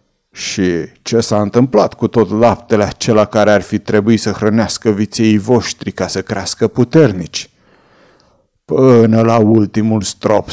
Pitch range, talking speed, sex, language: 105-125 Hz, 135 wpm, male, Romanian